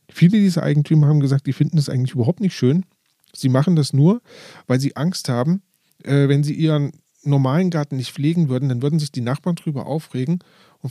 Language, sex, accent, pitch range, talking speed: German, male, German, 130-160 Hz, 205 wpm